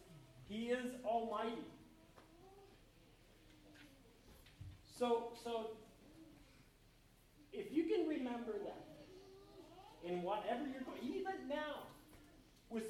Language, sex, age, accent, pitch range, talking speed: English, male, 40-59, American, 220-320 Hz, 80 wpm